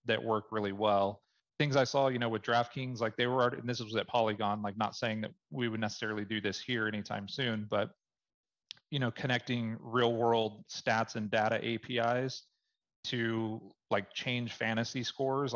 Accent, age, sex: American, 30-49, male